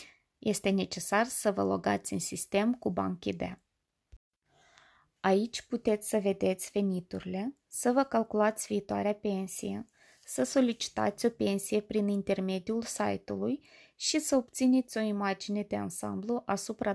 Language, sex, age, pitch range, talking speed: Romanian, female, 20-39, 190-235 Hz, 120 wpm